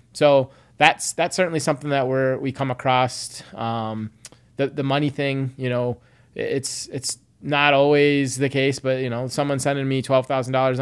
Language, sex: English, male